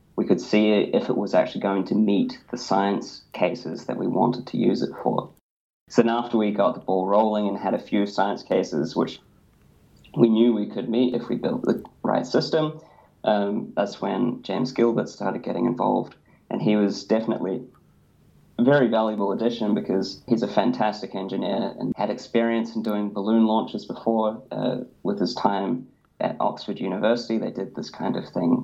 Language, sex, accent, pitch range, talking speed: English, male, Australian, 105-120 Hz, 185 wpm